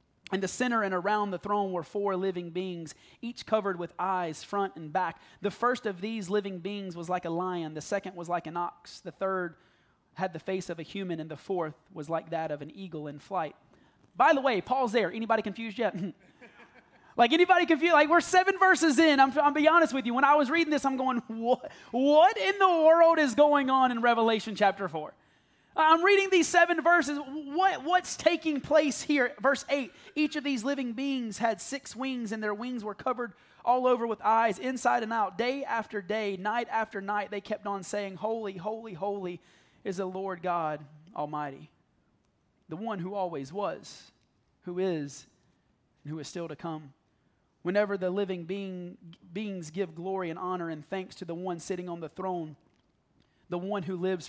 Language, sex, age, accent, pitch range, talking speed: English, male, 20-39, American, 180-260 Hz, 195 wpm